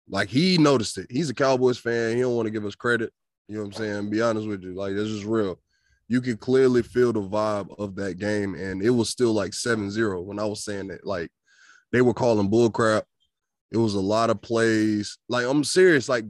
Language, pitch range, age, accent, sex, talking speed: English, 115-175 Hz, 20-39, American, male, 240 wpm